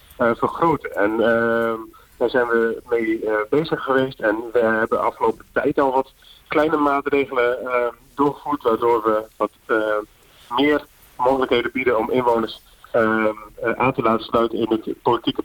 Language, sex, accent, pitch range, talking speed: Dutch, male, Dutch, 115-140 Hz, 155 wpm